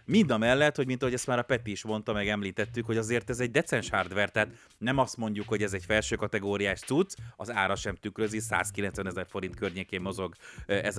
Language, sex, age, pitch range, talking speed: Hungarian, male, 30-49, 100-130 Hz, 220 wpm